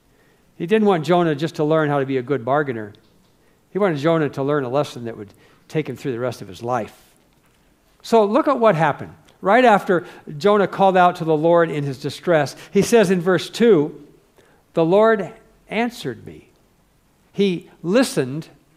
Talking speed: 180 wpm